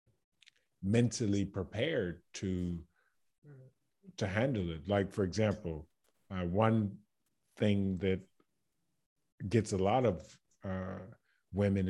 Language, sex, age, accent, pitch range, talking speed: English, male, 50-69, American, 95-115 Hz, 95 wpm